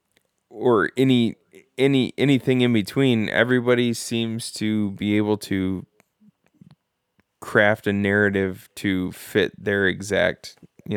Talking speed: 110 wpm